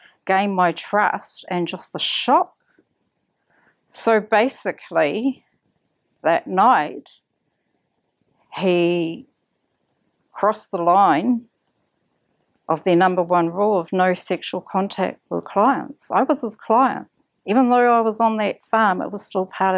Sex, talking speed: female, 125 wpm